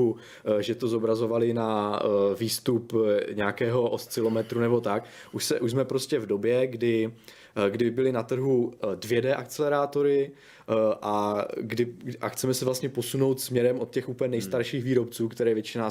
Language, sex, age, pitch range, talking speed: Czech, male, 20-39, 110-130 Hz, 145 wpm